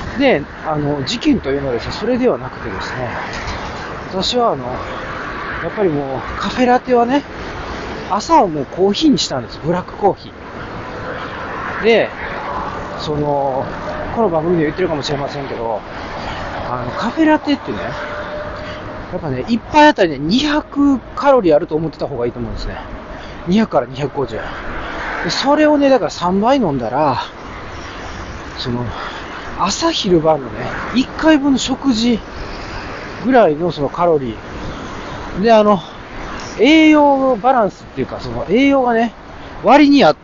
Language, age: Japanese, 40-59